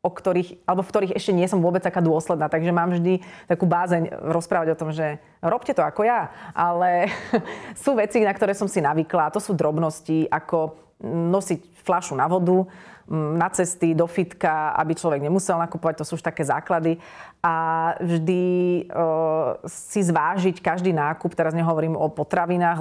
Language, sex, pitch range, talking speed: Slovak, female, 160-185 Hz, 170 wpm